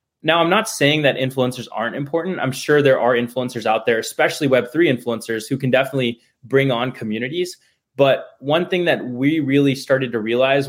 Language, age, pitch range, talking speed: English, 20-39, 120-140 Hz, 185 wpm